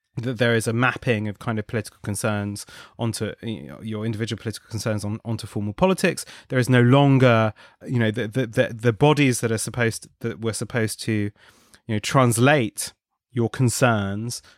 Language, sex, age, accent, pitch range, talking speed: English, male, 30-49, British, 110-130 Hz, 185 wpm